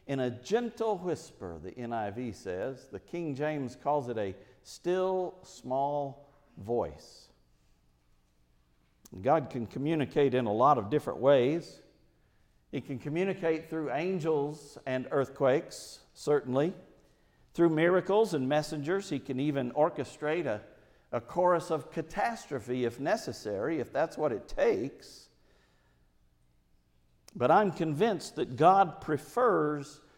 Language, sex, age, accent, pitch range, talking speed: English, male, 50-69, American, 120-170 Hz, 115 wpm